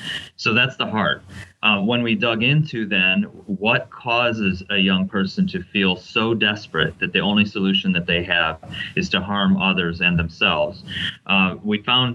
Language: English